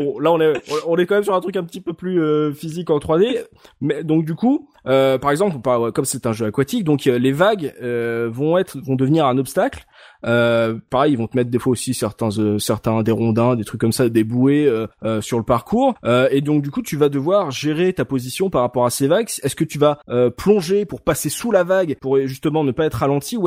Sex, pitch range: male, 125-160 Hz